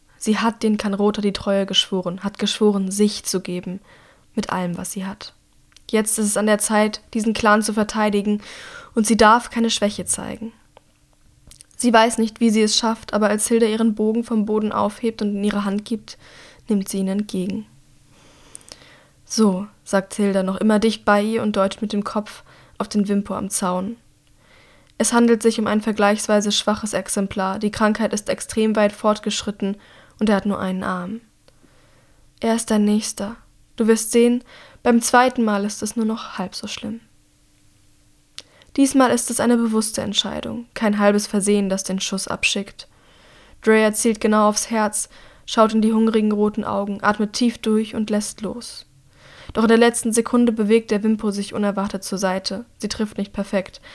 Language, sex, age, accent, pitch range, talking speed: German, female, 10-29, German, 195-225 Hz, 175 wpm